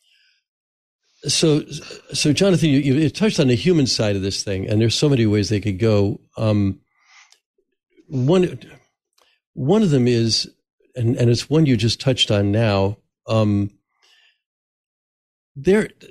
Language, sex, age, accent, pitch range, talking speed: English, male, 50-69, American, 105-140 Hz, 140 wpm